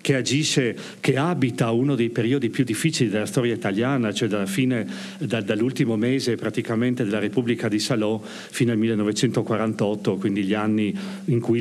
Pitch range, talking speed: 110-140 Hz, 160 wpm